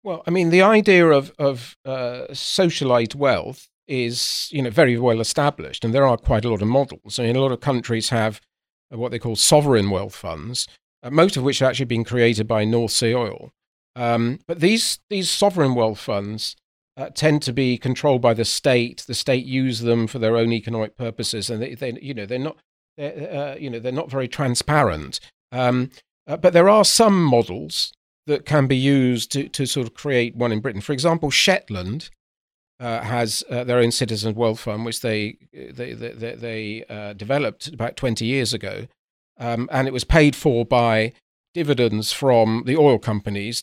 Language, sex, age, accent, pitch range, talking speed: English, male, 40-59, British, 115-140 Hz, 195 wpm